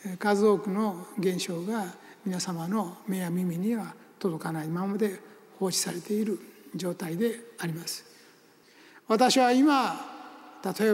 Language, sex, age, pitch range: Japanese, male, 60-79, 225-285 Hz